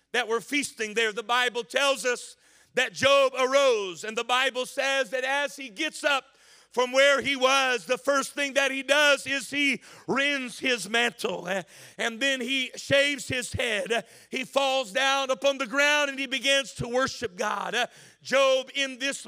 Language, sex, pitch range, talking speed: English, male, 245-280 Hz, 175 wpm